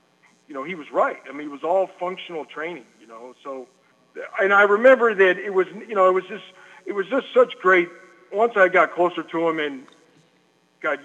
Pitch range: 145-190 Hz